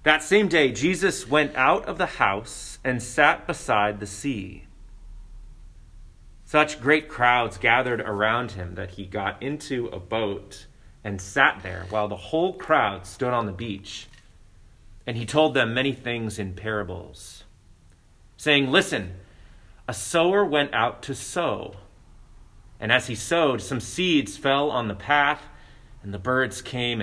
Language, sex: English, male